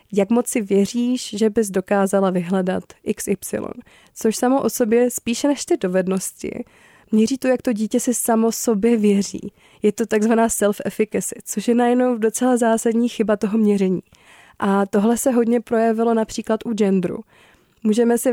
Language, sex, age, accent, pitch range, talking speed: Czech, female, 20-39, native, 200-235 Hz, 155 wpm